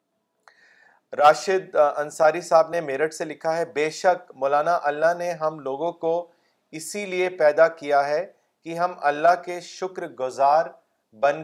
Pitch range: 150-175 Hz